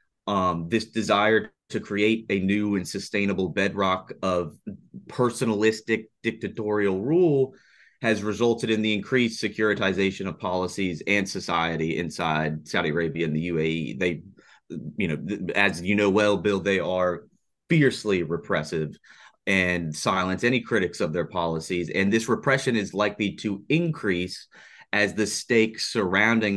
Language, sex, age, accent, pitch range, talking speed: English, male, 30-49, American, 90-110 Hz, 135 wpm